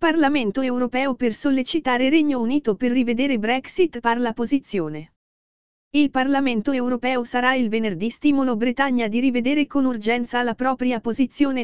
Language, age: English, 50-69